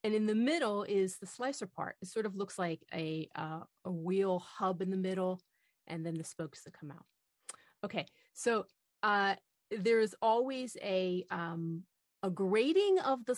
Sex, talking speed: female, 180 wpm